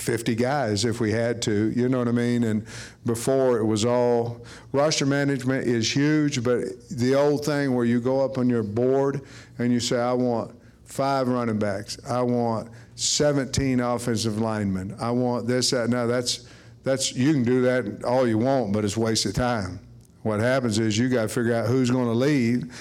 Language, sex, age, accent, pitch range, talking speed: English, male, 50-69, American, 115-130 Hz, 195 wpm